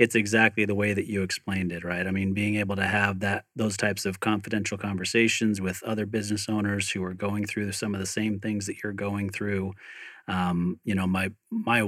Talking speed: 215 wpm